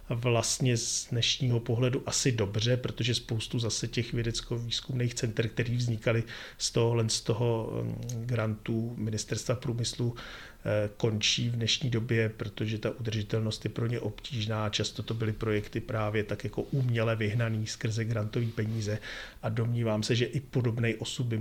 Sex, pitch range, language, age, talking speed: male, 110-120 Hz, Czech, 40-59, 145 wpm